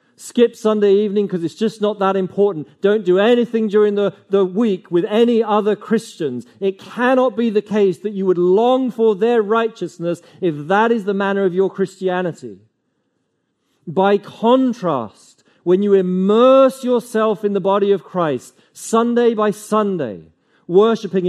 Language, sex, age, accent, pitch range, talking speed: English, male, 40-59, British, 175-220 Hz, 155 wpm